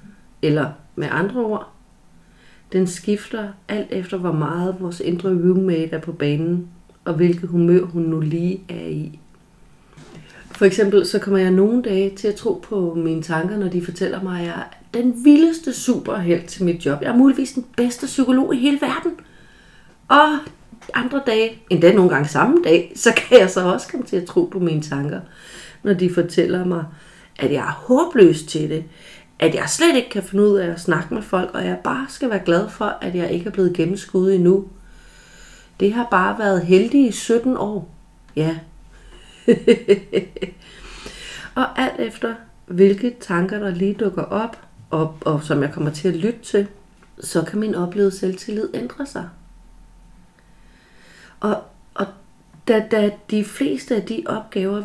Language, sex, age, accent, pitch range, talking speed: Danish, female, 40-59, native, 170-215 Hz, 175 wpm